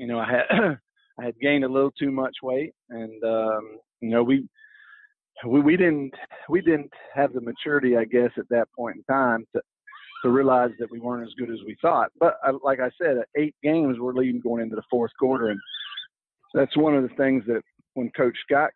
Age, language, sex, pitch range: 40-59, English, male, 115-135 Hz